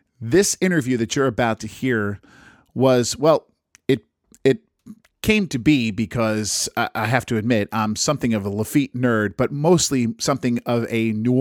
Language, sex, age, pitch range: English, male, 40-59, 110-140 Hz